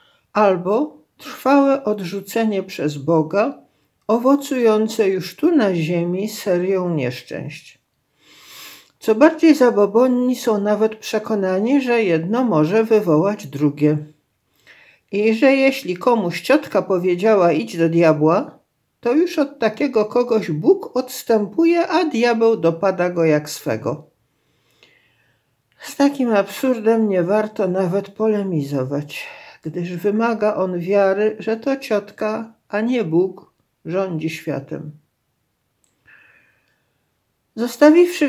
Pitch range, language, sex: 175-240 Hz, Polish, male